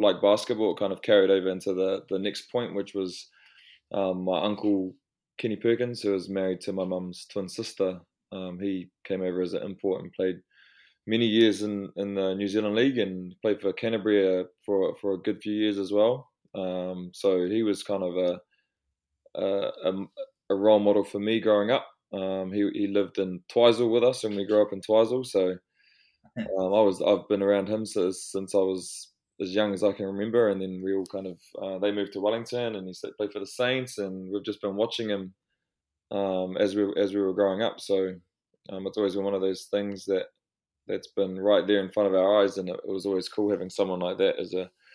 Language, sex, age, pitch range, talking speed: English, male, 20-39, 95-105 Hz, 220 wpm